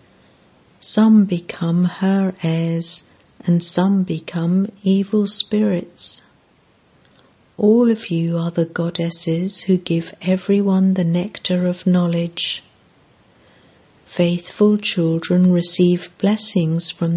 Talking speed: 95 wpm